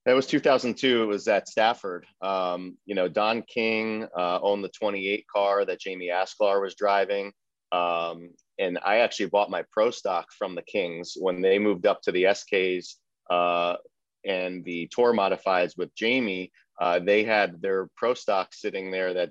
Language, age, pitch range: English, 30-49, 90-105 Hz